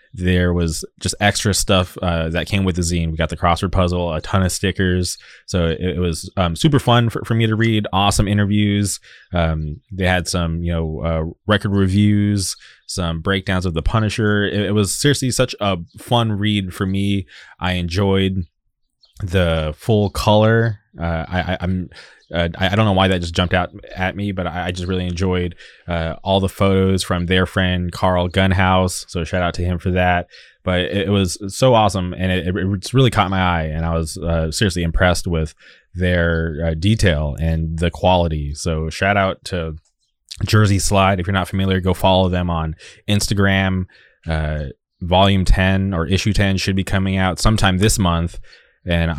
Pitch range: 85-100 Hz